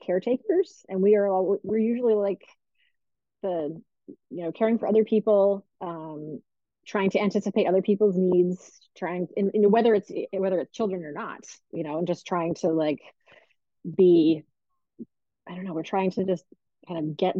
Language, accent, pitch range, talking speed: English, American, 160-205 Hz, 175 wpm